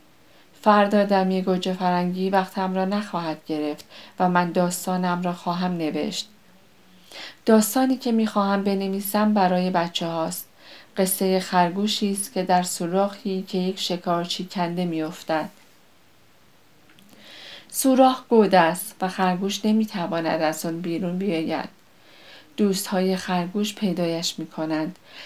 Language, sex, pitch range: Persian, female, 175-200 Hz